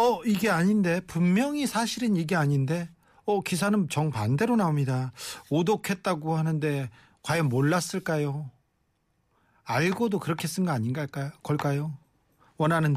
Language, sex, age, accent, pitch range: Korean, male, 40-59, native, 140-205 Hz